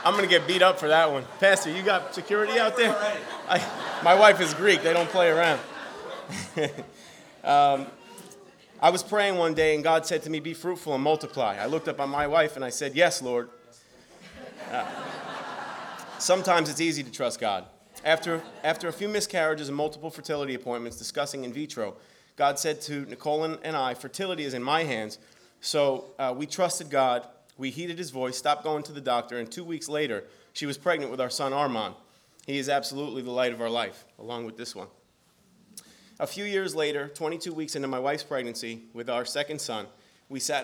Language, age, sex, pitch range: English, 30-49, male, 130-165 Hz